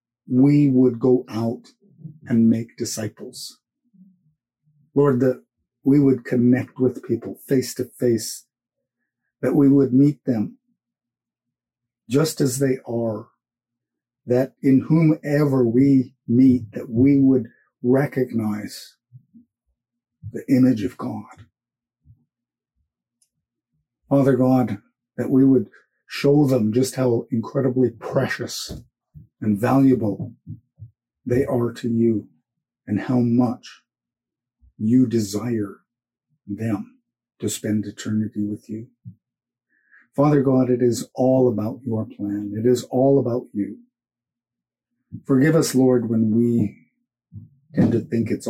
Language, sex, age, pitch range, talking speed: English, male, 50-69, 115-135 Hz, 110 wpm